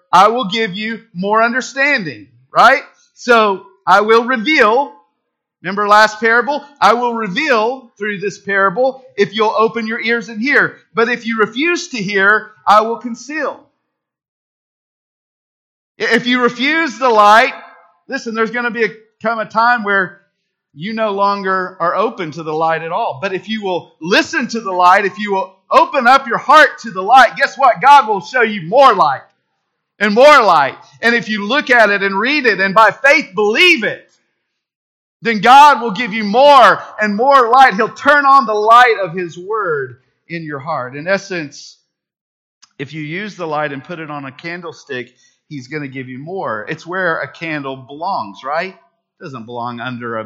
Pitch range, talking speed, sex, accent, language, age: 180-245 Hz, 180 wpm, male, American, English, 40-59